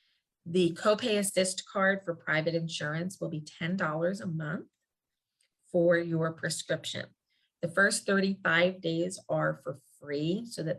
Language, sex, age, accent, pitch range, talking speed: English, female, 30-49, American, 160-180 Hz, 135 wpm